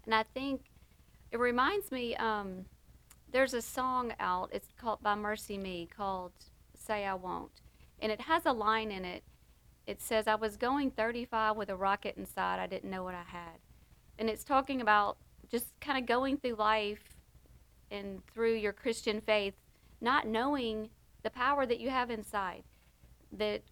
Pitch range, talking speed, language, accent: 190-230 Hz, 170 wpm, English, American